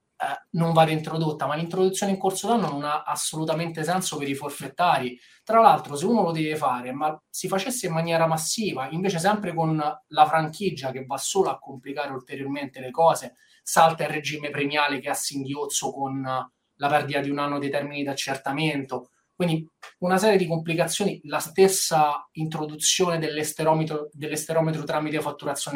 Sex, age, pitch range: male, 20-39, 140-165 Hz